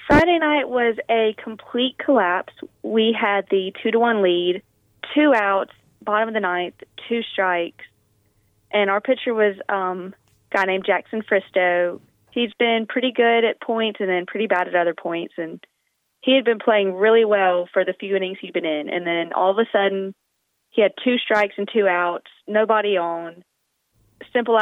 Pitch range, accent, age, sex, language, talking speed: 170-205 Hz, American, 20-39, female, English, 175 wpm